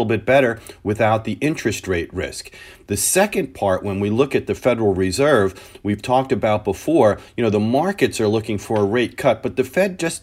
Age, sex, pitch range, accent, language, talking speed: 40-59, male, 100-120 Hz, American, English, 210 wpm